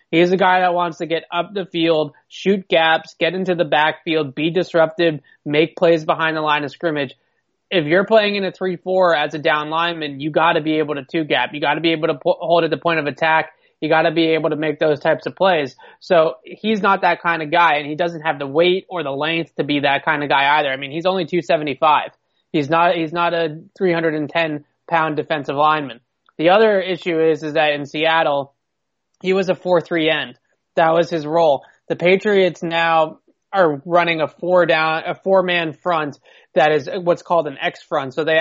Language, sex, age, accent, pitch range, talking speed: English, male, 20-39, American, 155-175 Hz, 215 wpm